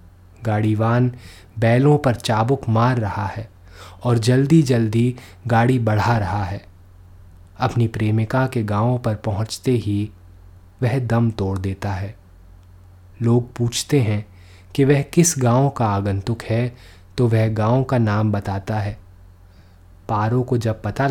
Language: Hindi